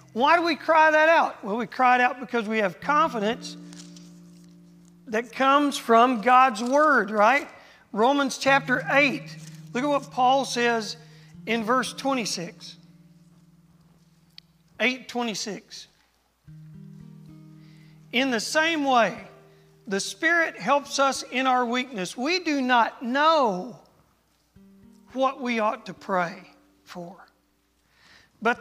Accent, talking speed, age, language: American, 115 wpm, 40-59, English